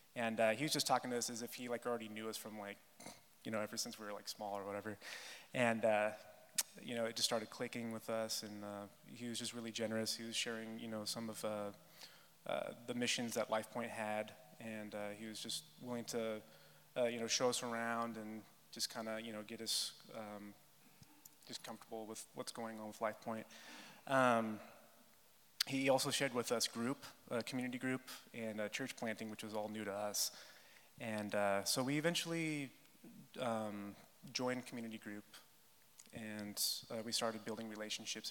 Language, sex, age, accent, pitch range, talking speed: English, male, 30-49, American, 110-120 Hz, 195 wpm